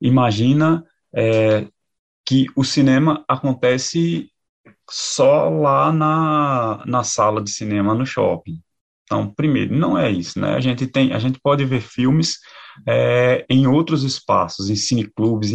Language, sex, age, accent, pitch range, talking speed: Portuguese, male, 20-39, Brazilian, 105-135 Hz, 135 wpm